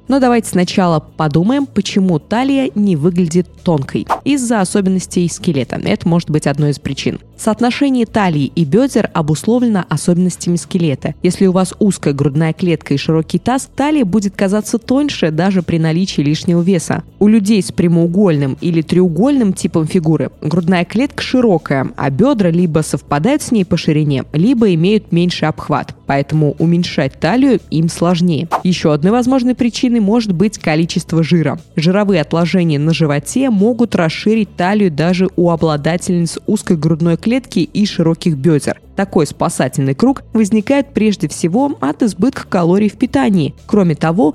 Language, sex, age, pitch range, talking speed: Russian, female, 20-39, 165-225 Hz, 145 wpm